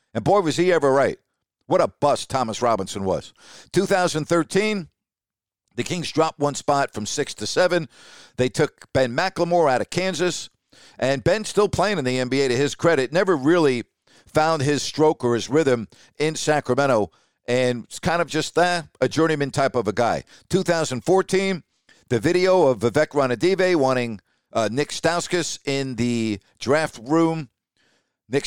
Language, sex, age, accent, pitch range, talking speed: English, male, 50-69, American, 125-170 Hz, 160 wpm